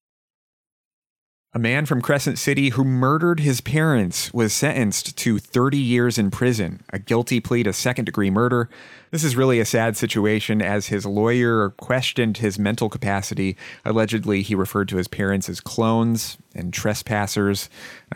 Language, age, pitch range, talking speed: English, 30-49, 100-125 Hz, 150 wpm